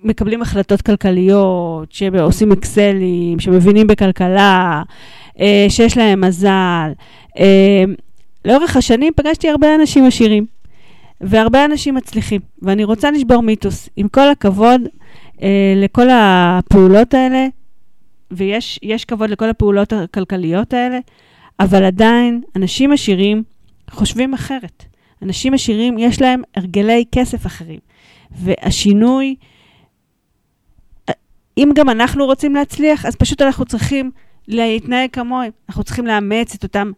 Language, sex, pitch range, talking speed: Hebrew, female, 195-240 Hz, 105 wpm